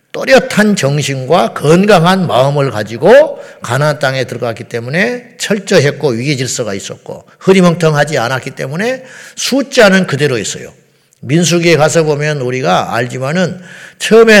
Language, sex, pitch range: Korean, male, 135-195 Hz